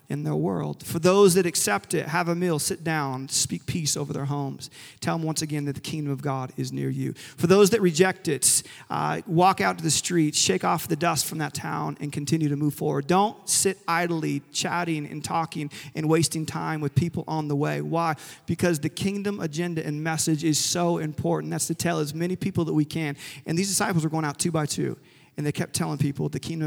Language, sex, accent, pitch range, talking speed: English, male, American, 145-170 Hz, 230 wpm